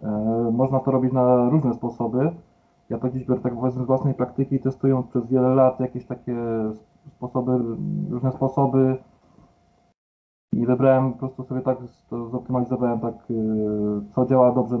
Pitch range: 115-130 Hz